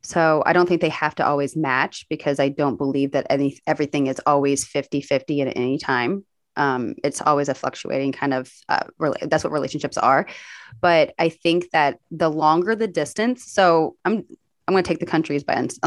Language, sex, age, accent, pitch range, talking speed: English, female, 20-39, American, 140-170 Hz, 205 wpm